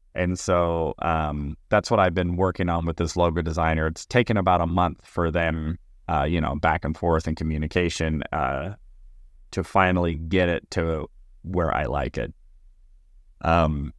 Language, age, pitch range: English, 30-49, 80-95 Hz